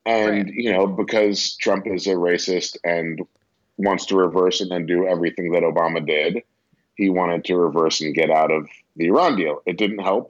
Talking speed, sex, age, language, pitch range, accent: 190 wpm, male, 30-49, English, 85-95 Hz, American